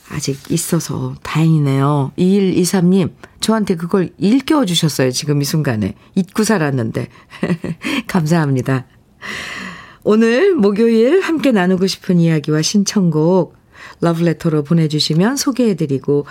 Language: Korean